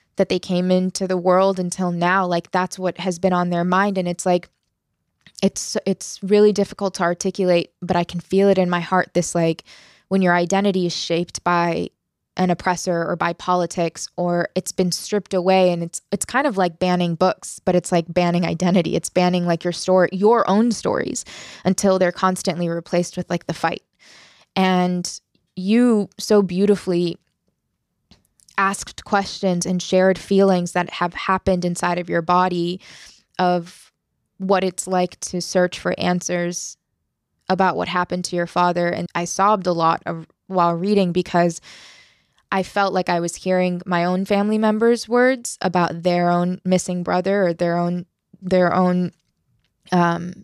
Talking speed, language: 170 wpm, English